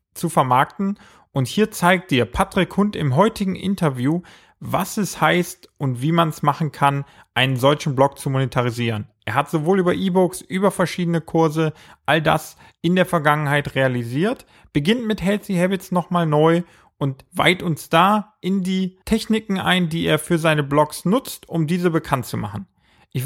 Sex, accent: male, German